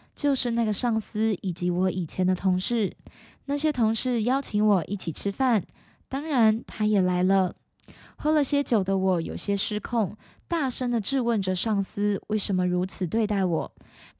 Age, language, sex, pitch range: 20-39, Chinese, female, 185-235 Hz